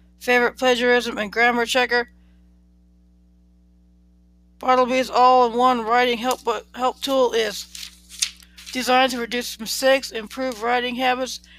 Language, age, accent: English, 60-79, American